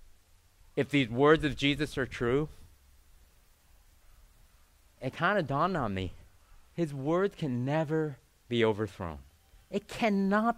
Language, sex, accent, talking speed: English, male, American, 120 wpm